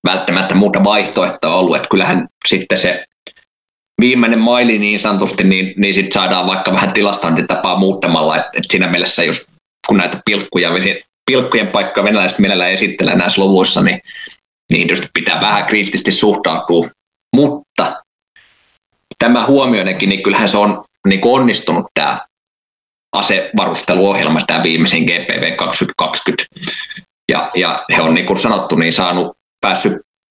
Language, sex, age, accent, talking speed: Finnish, male, 20-39, native, 130 wpm